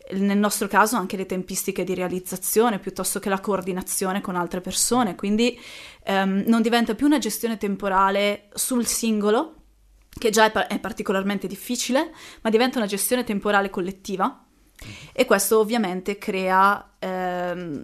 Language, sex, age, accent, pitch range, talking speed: Italian, female, 20-39, native, 190-225 Hz, 140 wpm